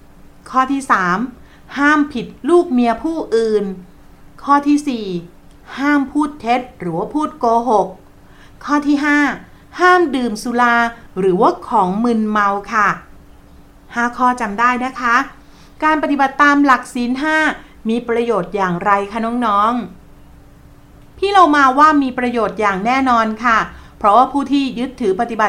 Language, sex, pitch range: Thai, female, 210-270 Hz